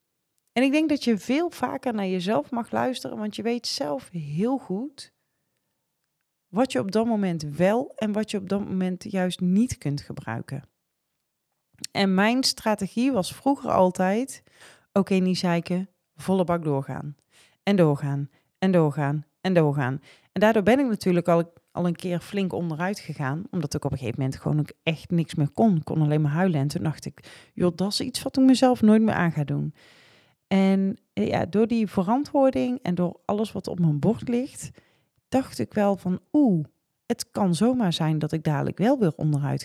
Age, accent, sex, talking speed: 30-49, Dutch, female, 190 wpm